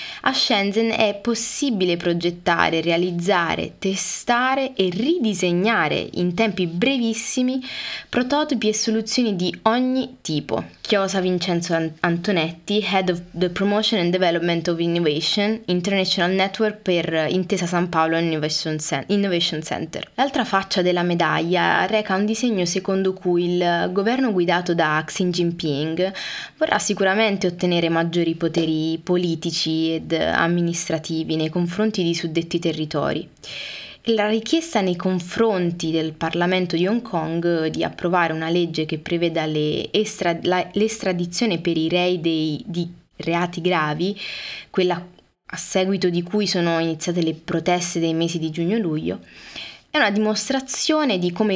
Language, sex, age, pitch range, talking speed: Italian, female, 20-39, 170-210 Hz, 130 wpm